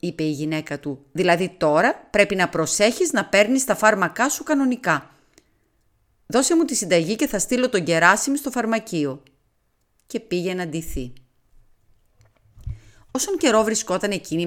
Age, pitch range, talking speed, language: 30-49, 145-225 Hz, 140 wpm, Greek